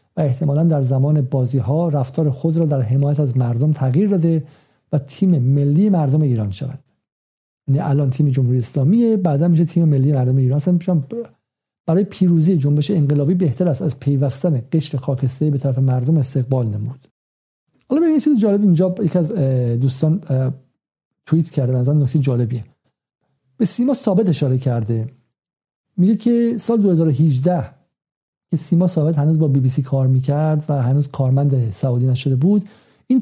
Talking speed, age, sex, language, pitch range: 155 wpm, 50-69, male, Persian, 135-175 Hz